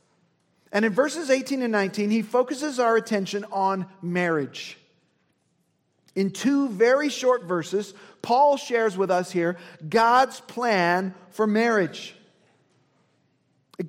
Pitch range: 180-240 Hz